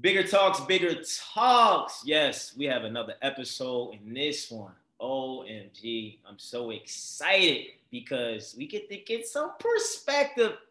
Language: English